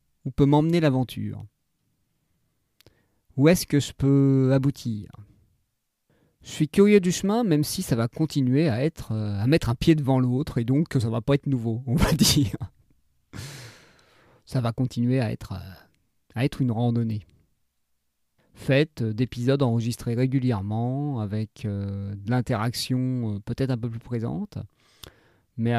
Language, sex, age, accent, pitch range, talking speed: French, male, 40-59, French, 115-145 Hz, 145 wpm